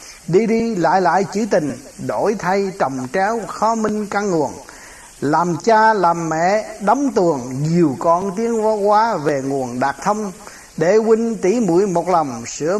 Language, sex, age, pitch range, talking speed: Vietnamese, male, 60-79, 165-220 Hz, 175 wpm